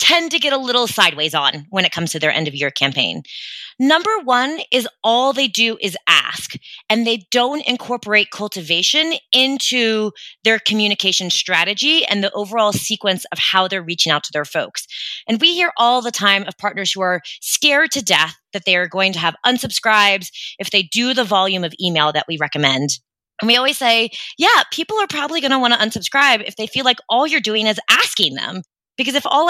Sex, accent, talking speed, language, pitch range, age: female, American, 200 wpm, English, 185-265 Hz, 20-39